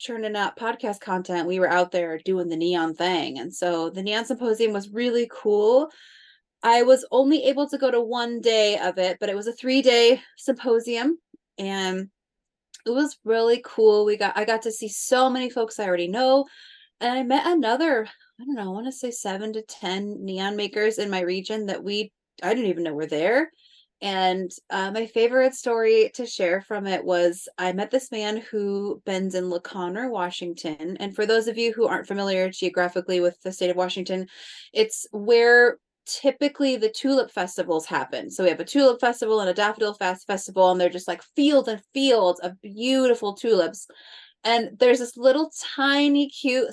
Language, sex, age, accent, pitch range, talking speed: English, female, 20-39, American, 185-255 Hz, 190 wpm